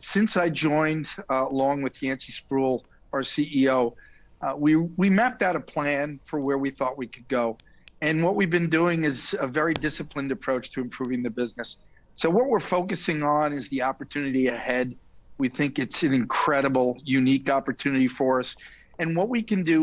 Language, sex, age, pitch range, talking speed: English, male, 50-69, 125-155 Hz, 185 wpm